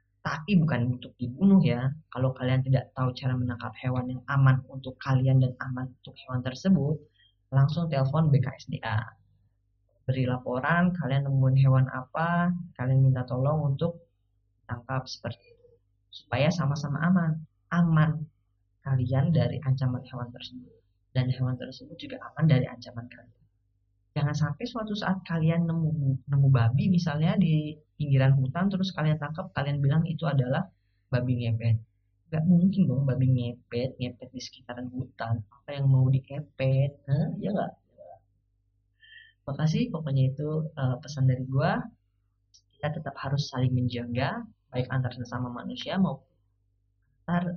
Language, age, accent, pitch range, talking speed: Indonesian, 20-39, native, 120-150 Hz, 140 wpm